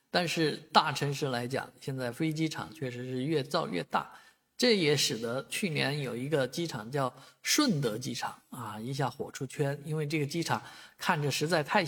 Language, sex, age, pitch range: Chinese, male, 50-69, 135-185 Hz